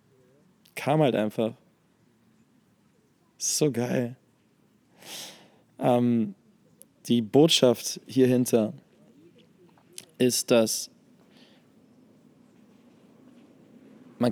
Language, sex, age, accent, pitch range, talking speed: German, male, 20-39, German, 115-160 Hz, 50 wpm